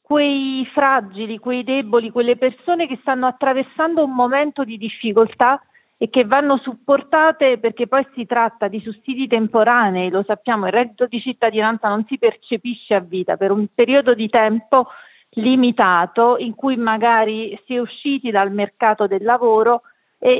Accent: native